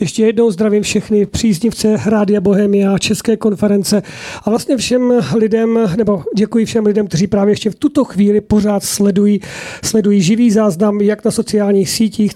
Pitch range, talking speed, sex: 200-230 Hz, 160 wpm, male